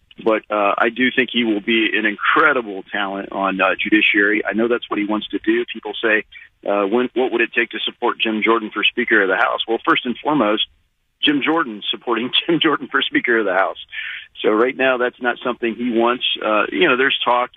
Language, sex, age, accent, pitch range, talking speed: English, male, 40-59, American, 105-125 Hz, 220 wpm